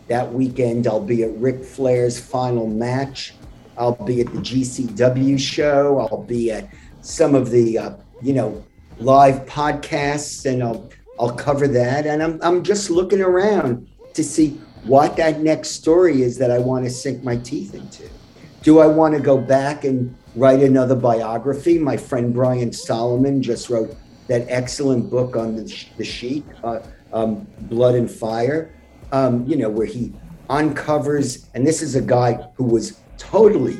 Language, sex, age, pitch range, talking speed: English, male, 50-69, 125-150 Hz, 165 wpm